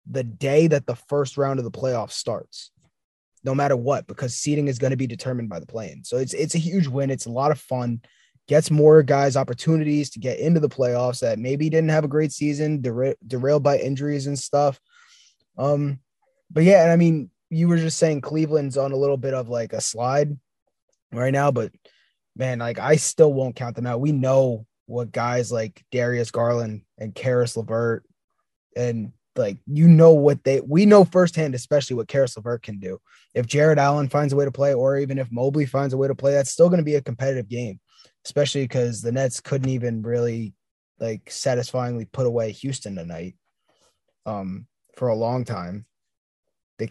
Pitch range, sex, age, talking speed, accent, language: 120-145 Hz, male, 20-39, 200 wpm, American, English